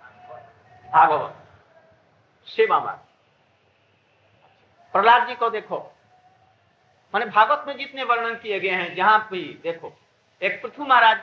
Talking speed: 100 wpm